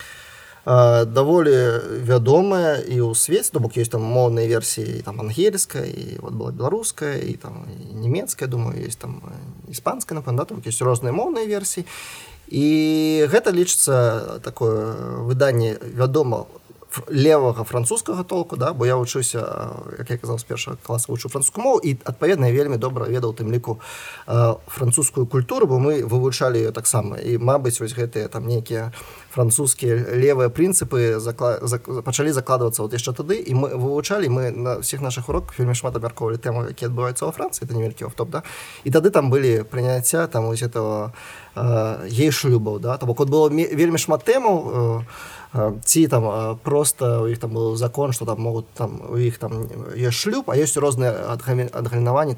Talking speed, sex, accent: 160 wpm, male, native